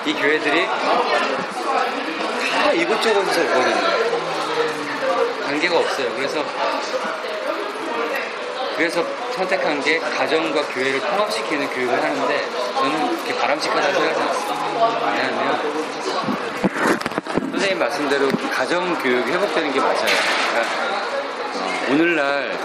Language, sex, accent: Korean, male, native